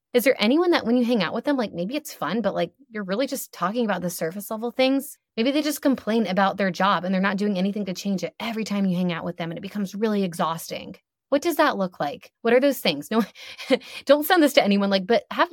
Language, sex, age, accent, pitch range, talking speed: English, female, 20-39, American, 185-260 Hz, 270 wpm